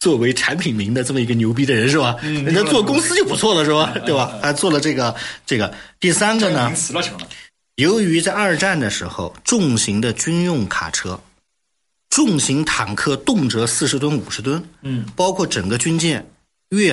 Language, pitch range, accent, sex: Chinese, 100-150 Hz, native, male